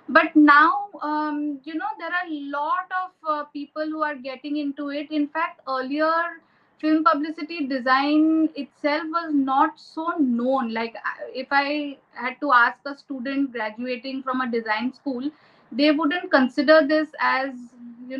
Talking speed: 155 wpm